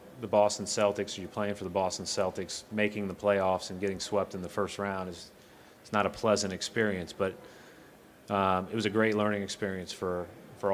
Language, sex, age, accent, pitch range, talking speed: English, male, 30-49, American, 95-110 Hz, 195 wpm